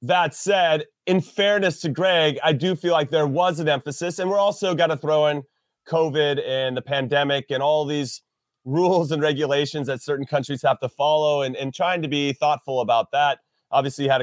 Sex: male